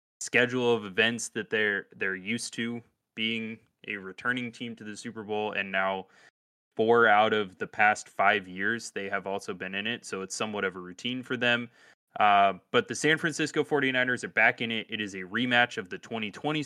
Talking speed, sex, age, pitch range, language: 200 wpm, male, 20-39, 100-125 Hz, English